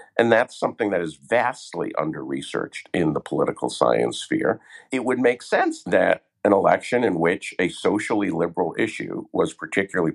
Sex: male